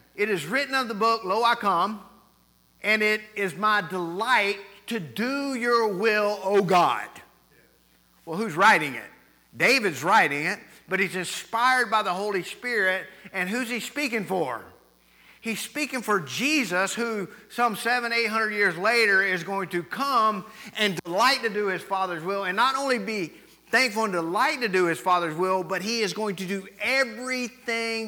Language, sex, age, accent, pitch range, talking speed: English, male, 50-69, American, 170-225 Hz, 170 wpm